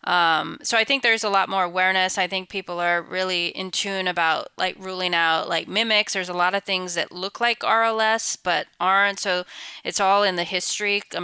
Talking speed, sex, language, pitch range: 215 wpm, female, English, 180-215 Hz